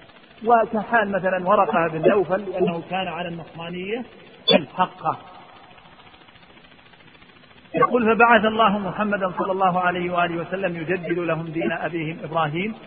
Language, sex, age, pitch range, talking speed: Arabic, male, 50-69, 175-215 Hz, 110 wpm